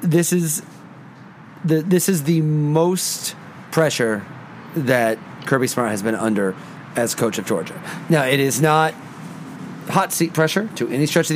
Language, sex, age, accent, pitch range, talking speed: English, male, 30-49, American, 130-175 Hz, 155 wpm